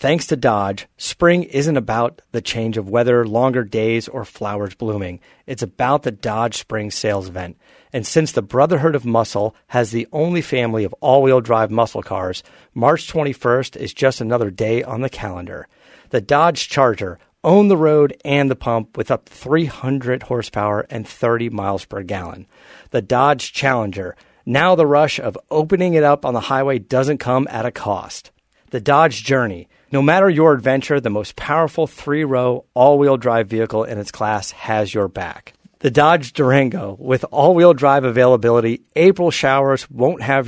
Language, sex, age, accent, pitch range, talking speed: English, male, 40-59, American, 110-145 Hz, 165 wpm